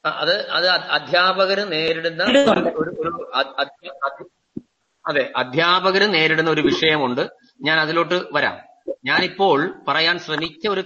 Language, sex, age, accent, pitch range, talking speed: Malayalam, male, 30-49, native, 145-180 Hz, 90 wpm